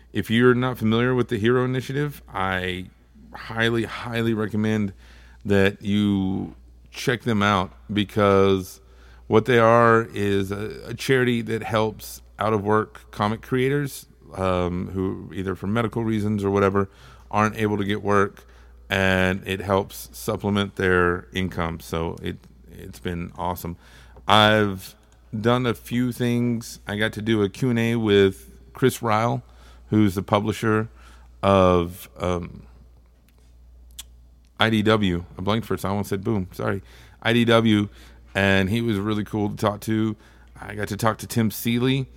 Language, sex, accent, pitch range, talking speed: English, male, American, 90-110 Hz, 140 wpm